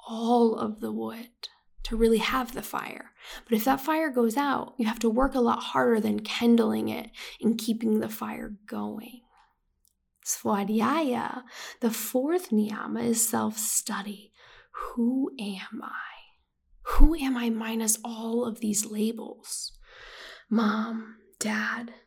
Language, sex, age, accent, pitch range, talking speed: English, female, 10-29, American, 220-250 Hz, 135 wpm